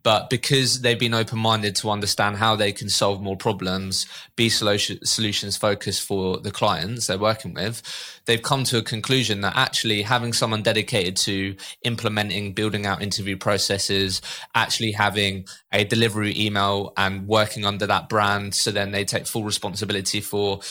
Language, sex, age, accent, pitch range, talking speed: English, male, 20-39, British, 100-115 Hz, 160 wpm